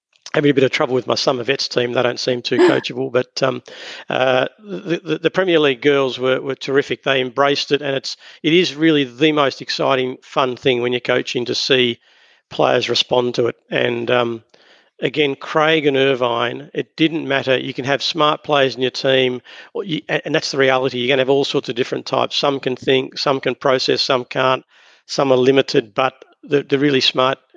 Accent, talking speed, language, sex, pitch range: Australian, 210 wpm, English, male, 125-140 Hz